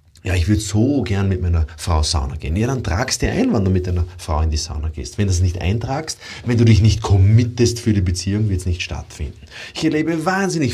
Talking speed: 245 wpm